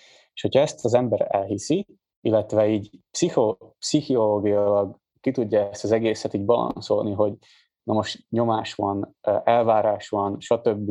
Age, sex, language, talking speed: 20-39, male, Hungarian, 125 wpm